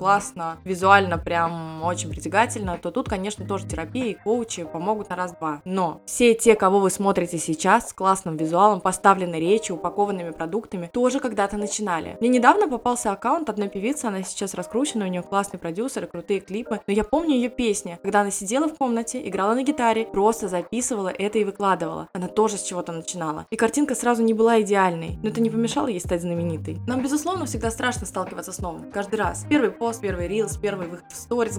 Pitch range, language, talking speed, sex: 185-230 Hz, Russian, 185 wpm, female